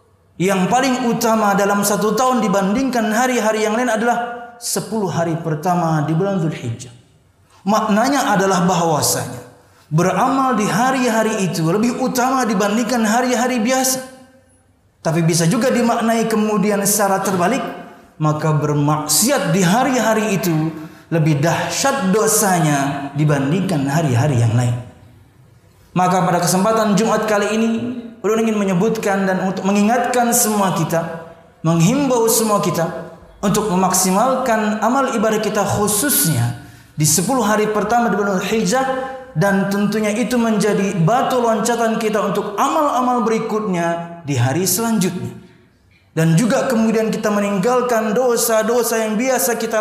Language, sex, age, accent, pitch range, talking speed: Indonesian, male, 20-39, native, 170-235 Hz, 120 wpm